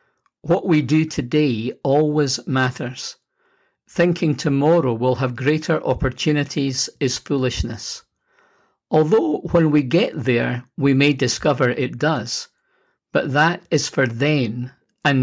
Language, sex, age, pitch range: English, male, 50-69, 125-155 Hz